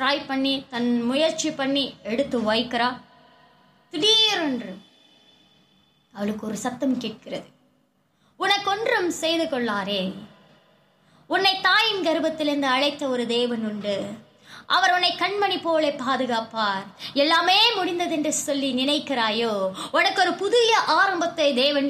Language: Tamil